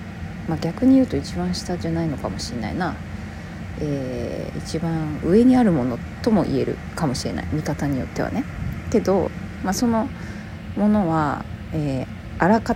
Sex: female